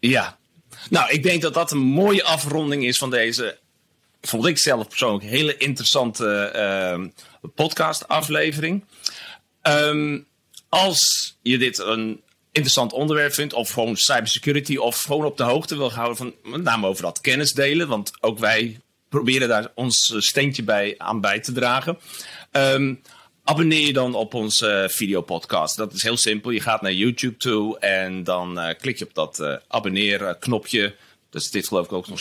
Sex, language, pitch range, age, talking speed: male, Dutch, 105-145 Hz, 40-59, 165 wpm